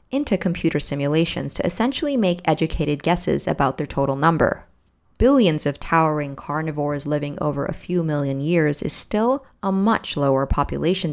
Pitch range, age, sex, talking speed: 145-190 Hz, 30-49, female, 150 wpm